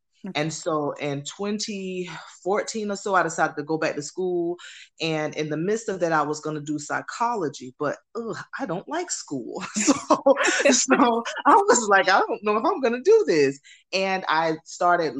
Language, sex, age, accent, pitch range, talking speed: English, female, 20-39, American, 145-185 Hz, 185 wpm